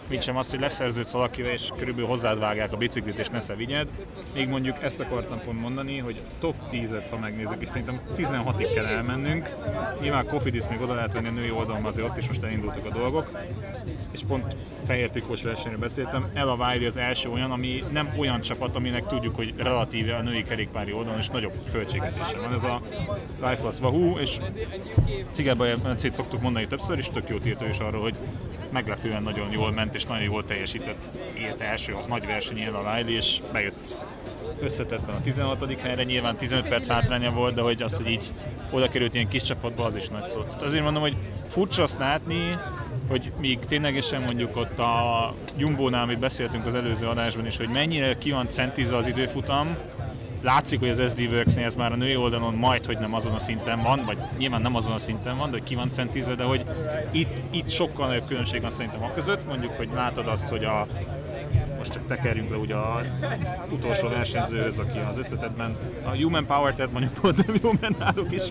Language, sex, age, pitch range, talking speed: Hungarian, male, 30-49, 115-130 Hz, 195 wpm